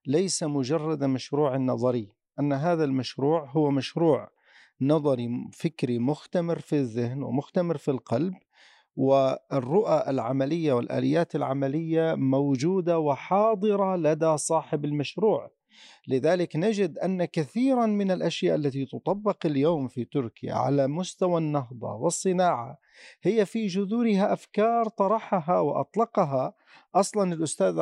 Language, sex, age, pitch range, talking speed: Arabic, male, 50-69, 140-185 Hz, 105 wpm